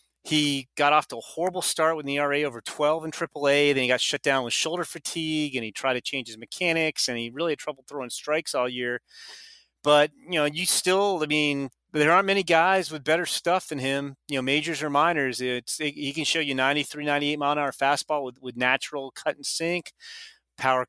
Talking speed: 225 wpm